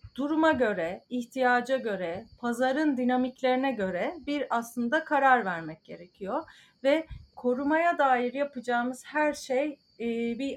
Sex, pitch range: female, 230-285 Hz